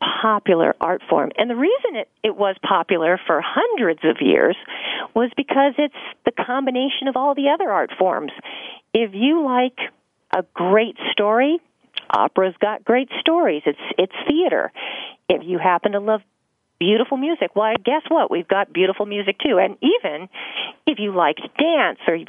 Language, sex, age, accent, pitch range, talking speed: English, female, 40-59, American, 195-280 Hz, 165 wpm